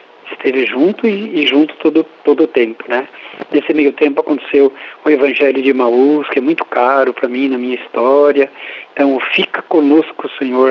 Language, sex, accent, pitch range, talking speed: Portuguese, male, Brazilian, 130-155 Hz, 180 wpm